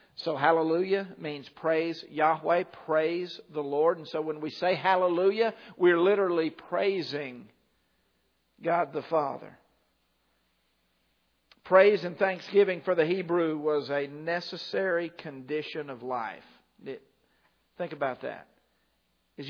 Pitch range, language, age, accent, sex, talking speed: 150-190 Hz, English, 50-69, American, male, 110 wpm